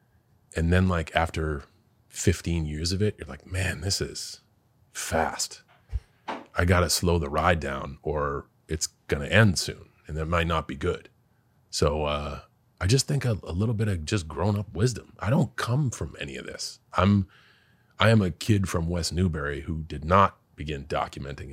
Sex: male